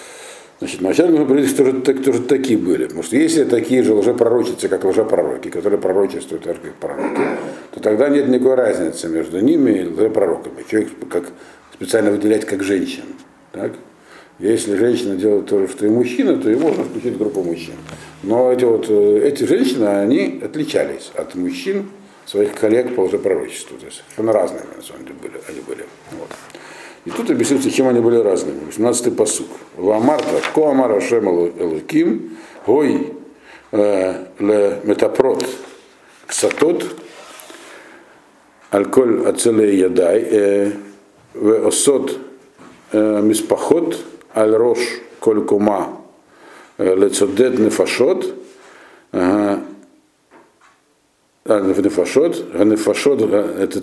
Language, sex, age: Russian, male, 60-79